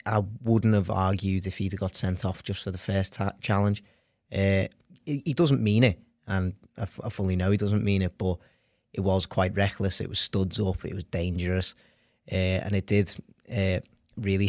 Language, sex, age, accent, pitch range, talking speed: English, male, 30-49, British, 95-105 Hz, 205 wpm